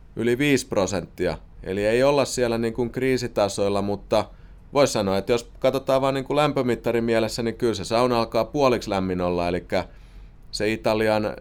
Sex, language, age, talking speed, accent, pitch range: male, Finnish, 30-49, 165 wpm, native, 95-120 Hz